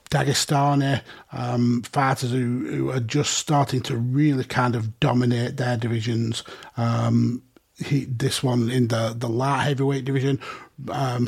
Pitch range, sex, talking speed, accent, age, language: 125-145 Hz, male, 140 wpm, British, 30-49, English